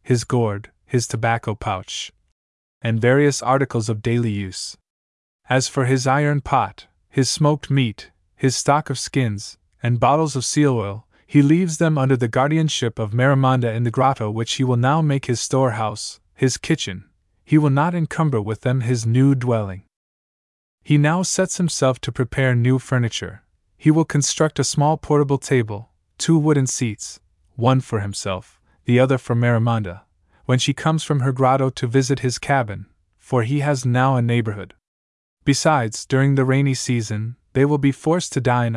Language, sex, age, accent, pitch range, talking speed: English, male, 20-39, American, 110-140 Hz, 170 wpm